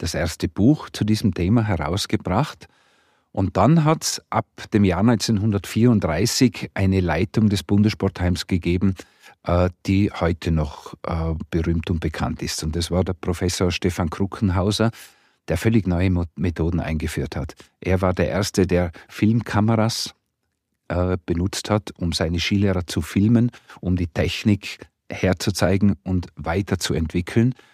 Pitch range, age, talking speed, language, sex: 90-105 Hz, 50-69, 130 wpm, German, male